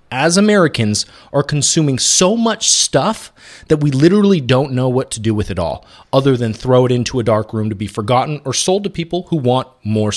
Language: English